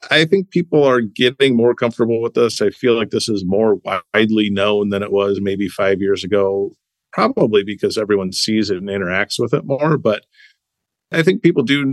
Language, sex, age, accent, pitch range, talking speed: English, male, 40-59, American, 105-135 Hz, 195 wpm